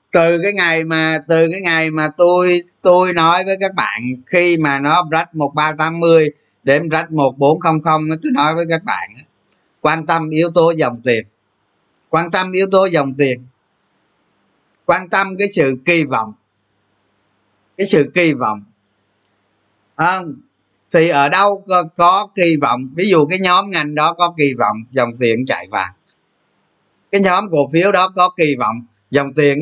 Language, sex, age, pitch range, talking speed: Vietnamese, male, 20-39, 125-180 Hz, 160 wpm